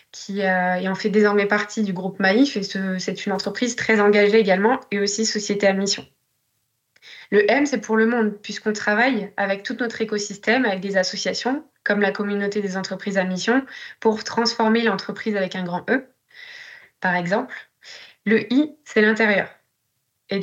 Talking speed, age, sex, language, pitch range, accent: 170 wpm, 20-39, female, French, 195-230 Hz, French